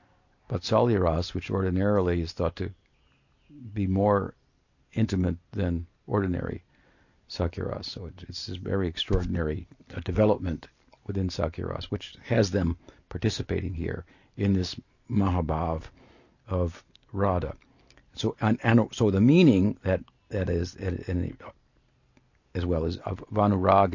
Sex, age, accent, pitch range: male, 60-79, American, 90-110 Hz